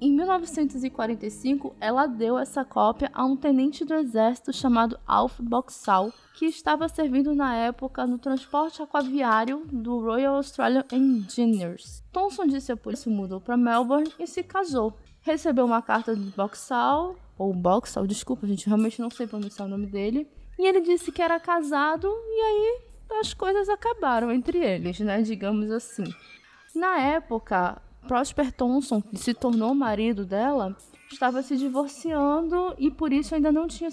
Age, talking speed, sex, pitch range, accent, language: 20-39, 155 wpm, female, 230-310 Hz, Brazilian, Portuguese